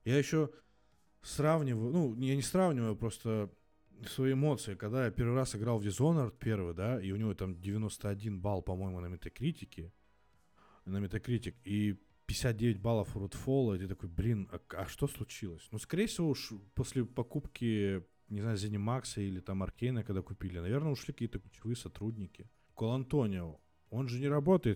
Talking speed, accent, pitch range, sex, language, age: 165 wpm, native, 95-130 Hz, male, Russian, 20-39